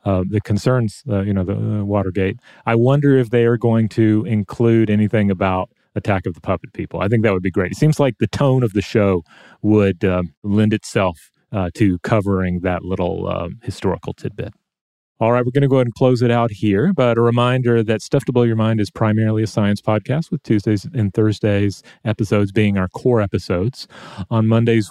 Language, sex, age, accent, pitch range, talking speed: English, male, 30-49, American, 100-120 Hz, 210 wpm